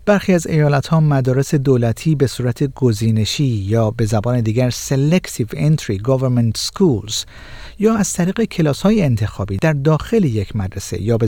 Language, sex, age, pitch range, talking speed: Persian, male, 50-69, 115-160 Hz, 150 wpm